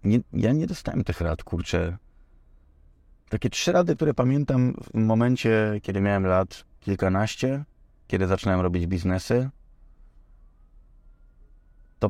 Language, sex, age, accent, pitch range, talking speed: Polish, male, 30-49, native, 95-120 Hz, 115 wpm